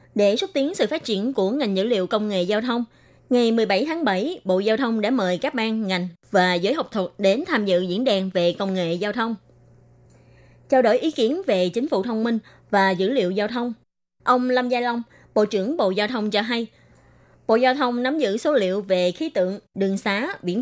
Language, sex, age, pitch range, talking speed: Vietnamese, female, 20-39, 185-245 Hz, 225 wpm